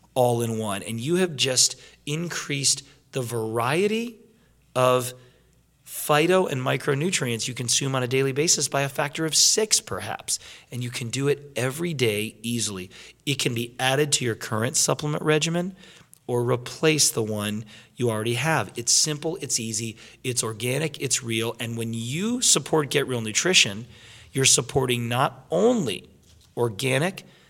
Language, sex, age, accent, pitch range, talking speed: English, male, 40-59, American, 115-150 Hz, 155 wpm